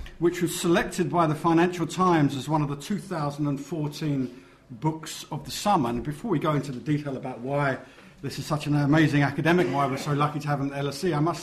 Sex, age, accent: male, 50-69, British